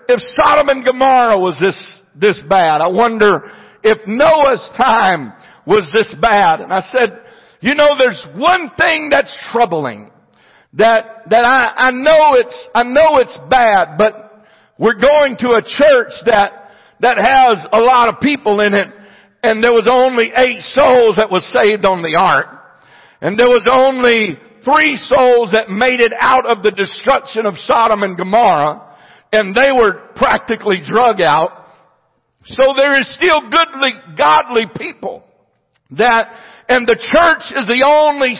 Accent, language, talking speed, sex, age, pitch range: American, English, 155 wpm, male, 60-79, 205-265 Hz